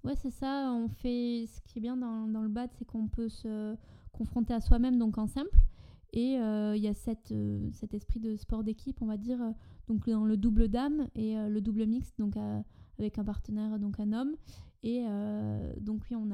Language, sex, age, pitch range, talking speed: French, female, 20-39, 210-235 Hz, 225 wpm